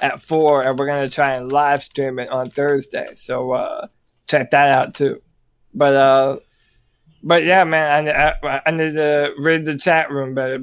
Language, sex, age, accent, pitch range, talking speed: English, male, 20-39, American, 140-155 Hz, 190 wpm